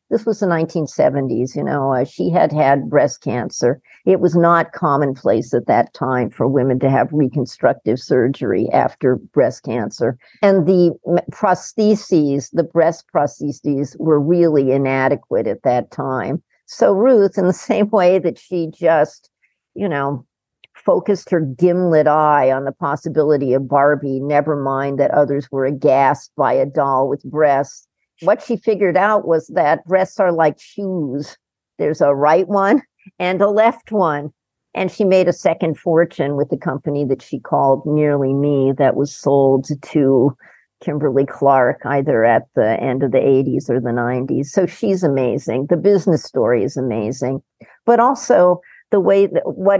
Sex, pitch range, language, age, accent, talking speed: female, 135-180 Hz, English, 50-69, American, 160 wpm